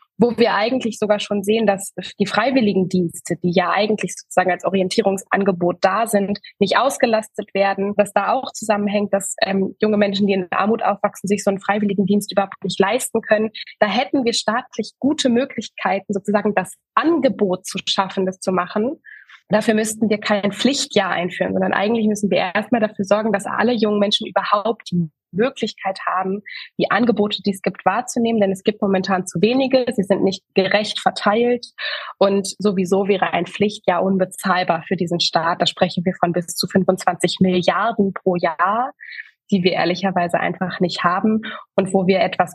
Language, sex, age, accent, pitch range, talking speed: German, female, 20-39, German, 190-220 Hz, 170 wpm